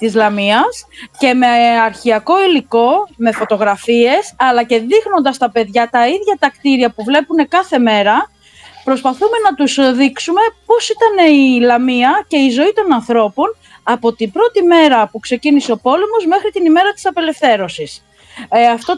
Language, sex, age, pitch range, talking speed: Greek, female, 30-49, 235-360 Hz, 155 wpm